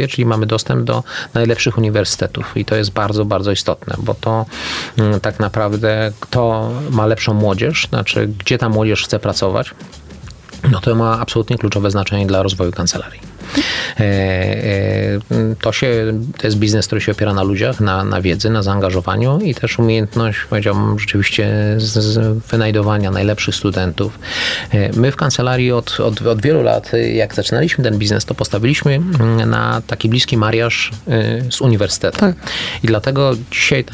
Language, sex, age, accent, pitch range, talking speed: Polish, male, 30-49, native, 105-120 Hz, 150 wpm